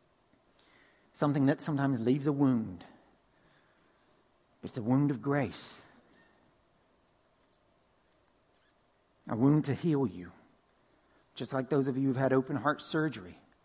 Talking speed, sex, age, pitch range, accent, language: 115 wpm, male, 50-69, 100-140 Hz, American, English